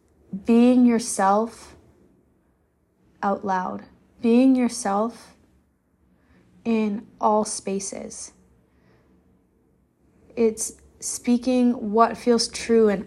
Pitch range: 205-245 Hz